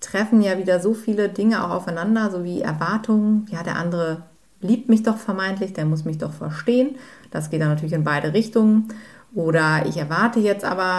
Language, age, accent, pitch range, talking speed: German, 30-49, German, 170-220 Hz, 190 wpm